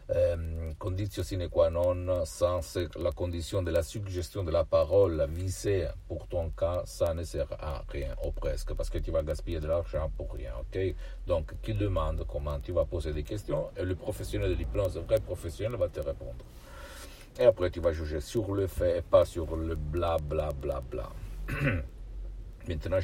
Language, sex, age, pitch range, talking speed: Italian, male, 60-79, 85-105 Hz, 195 wpm